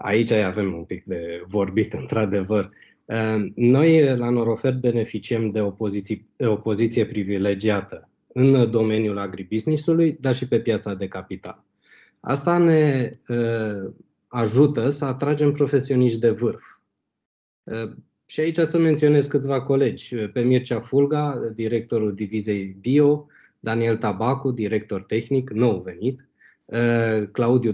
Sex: male